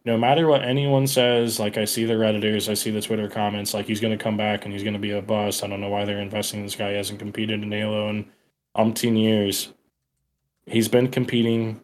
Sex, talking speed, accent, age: male, 245 wpm, American, 20-39